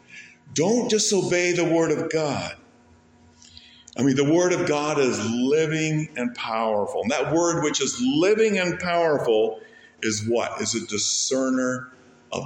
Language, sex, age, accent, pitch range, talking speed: English, male, 50-69, American, 110-155 Hz, 145 wpm